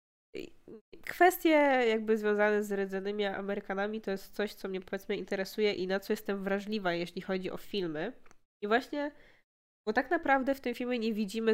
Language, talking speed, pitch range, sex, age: Polish, 165 wpm, 190-225 Hz, female, 20-39